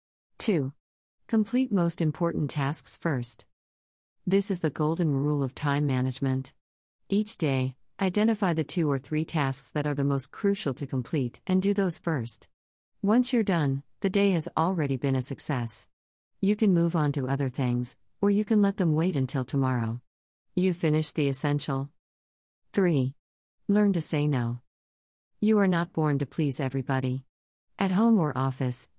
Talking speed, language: 160 wpm, English